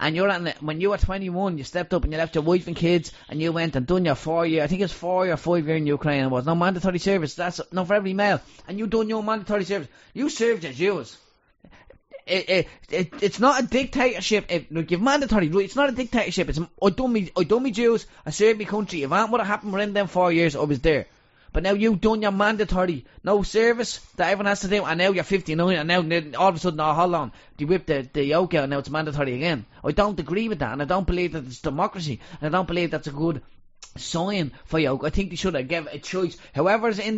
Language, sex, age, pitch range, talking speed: English, male, 20-39, 155-205 Hz, 265 wpm